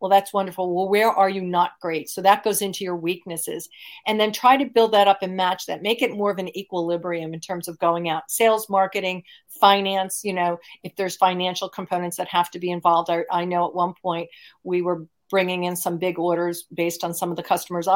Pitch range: 175-205 Hz